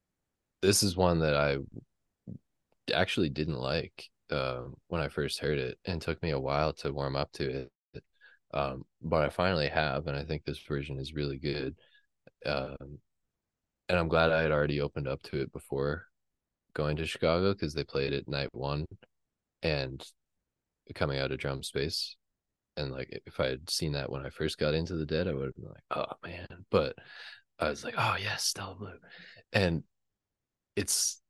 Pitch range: 70-85 Hz